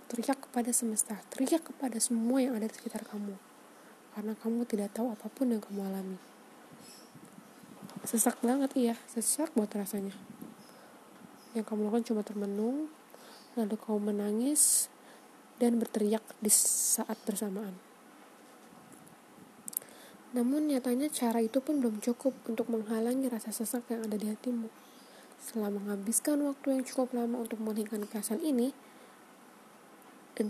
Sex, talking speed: female, 125 wpm